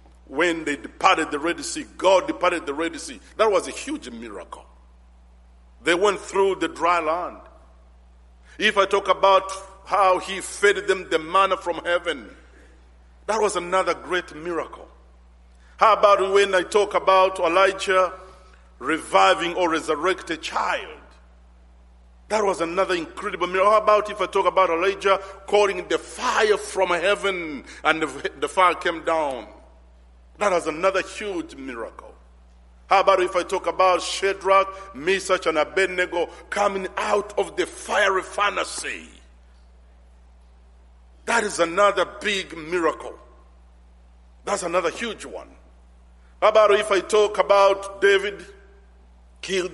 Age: 50-69